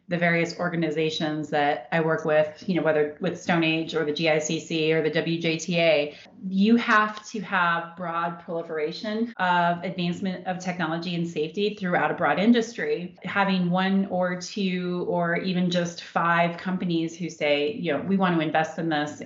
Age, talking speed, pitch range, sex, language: 30-49, 170 wpm, 160-185 Hz, female, English